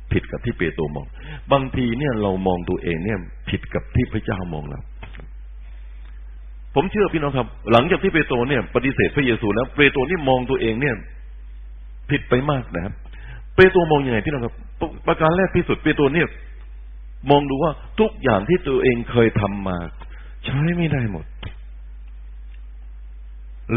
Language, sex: Thai, male